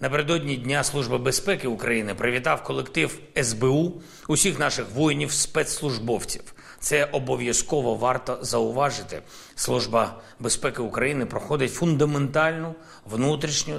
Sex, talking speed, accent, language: male, 90 wpm, native, Ukrainian